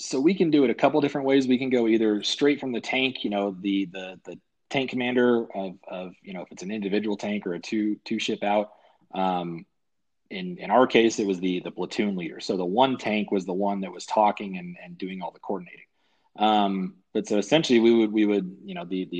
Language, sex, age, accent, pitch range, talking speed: English, male, 30-49, American, 95-120 Hz, 245 wpm